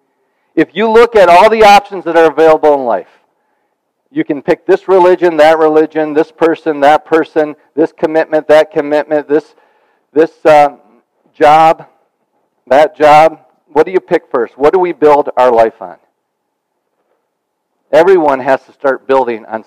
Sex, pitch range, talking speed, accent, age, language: male, 150-210 Hz, 155 wpm, American, 50-69, English